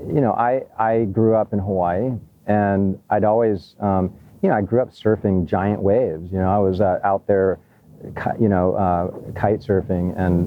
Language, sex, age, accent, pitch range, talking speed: English, male, 40-59, American, 90-105 Hz, 190 wpm